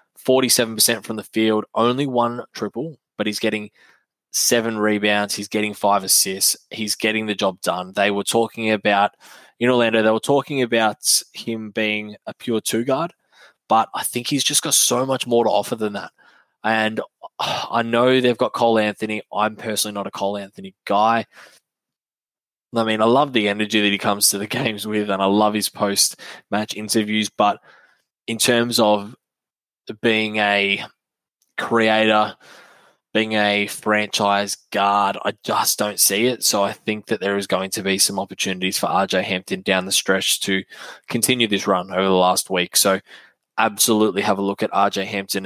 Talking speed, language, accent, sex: 175 wpm, English, Australian, male